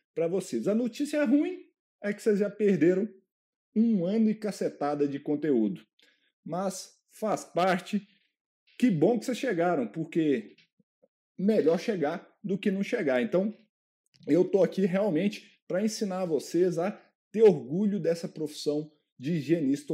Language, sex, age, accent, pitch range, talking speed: Portuguese, male, 50-69, Brazilian, 150-205 Hz, 140 wpm